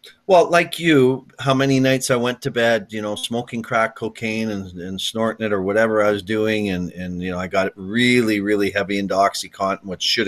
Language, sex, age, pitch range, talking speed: English, male, 40-59, 95-115 Hz, 215 wpm